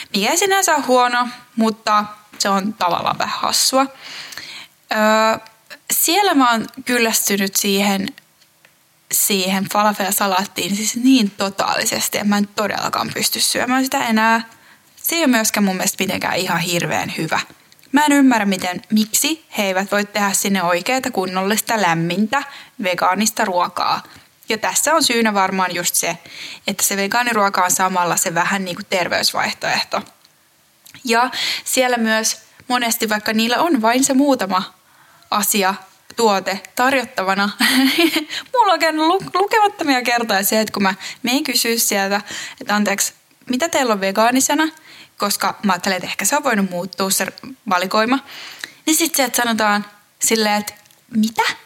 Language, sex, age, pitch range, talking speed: Finnish, female, 10-29, 195-260 Hz, 140 wpm